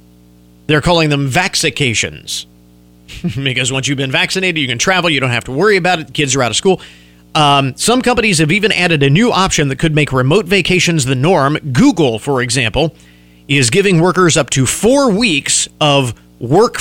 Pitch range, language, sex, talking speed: 110-170 Hz, English, male, 190 wpm